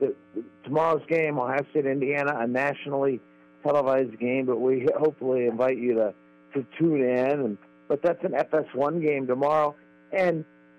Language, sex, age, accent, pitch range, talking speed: English, male, 50-69, American, 125-155 Hz, 145 wpm